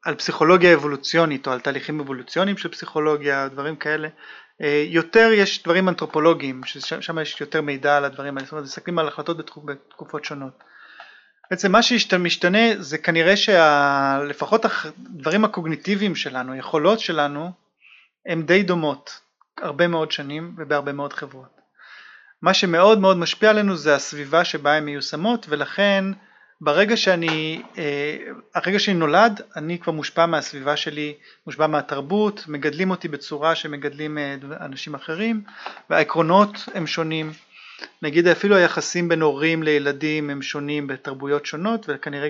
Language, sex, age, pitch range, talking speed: Hebrew, male, 30-49, 145-190 Hz, 130 wpm